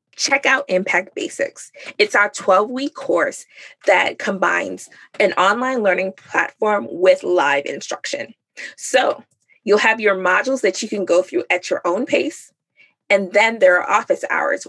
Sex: female